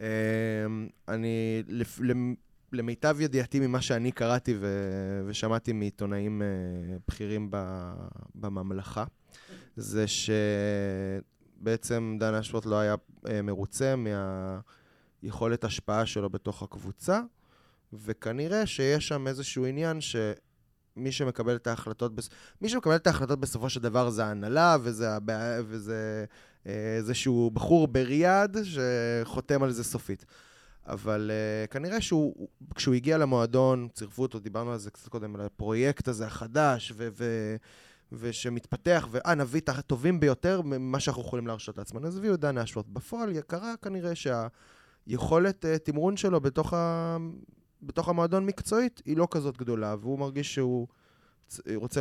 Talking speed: 125 wpm